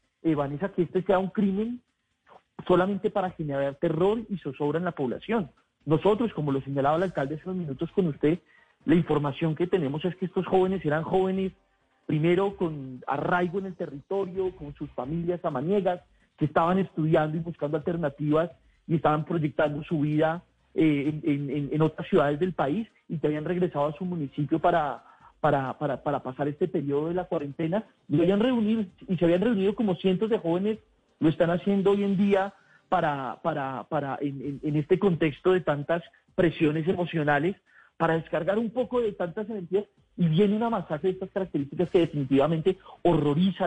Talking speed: 175 wpm